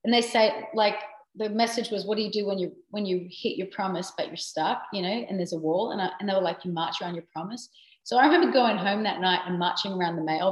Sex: female